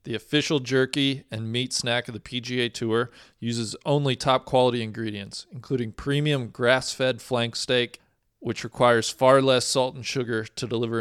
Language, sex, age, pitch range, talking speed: English, male, 40-59, 115-135 Hz, 160 wpm